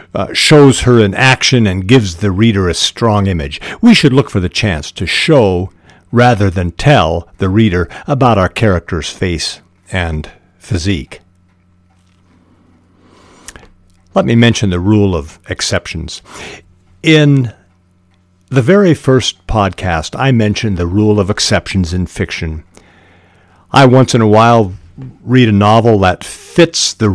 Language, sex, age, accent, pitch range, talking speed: English, male, 50-69, American, 90-115 Hz, 135 wpm